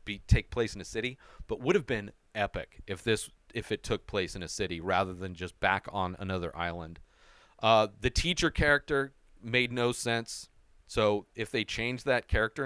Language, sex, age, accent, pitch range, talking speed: English, male, 40-59, American, 100-135 Hz, 190 wpm